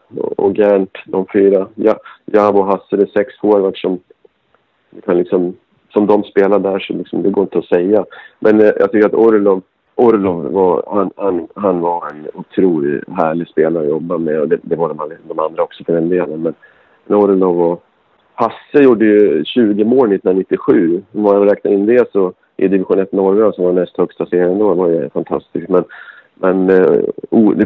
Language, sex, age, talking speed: Swedish, male, 40-59, 185 wpm